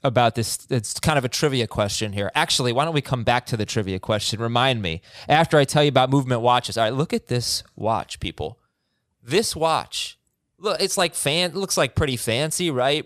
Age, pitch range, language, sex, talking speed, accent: 20-39, 130-195 Hz, English, male, 210 wpm, American